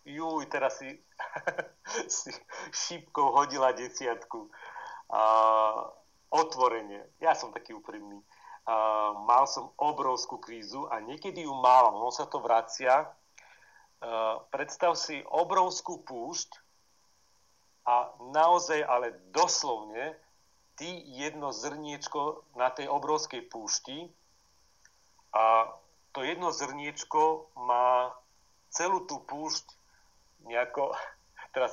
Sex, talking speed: male, 95 wpm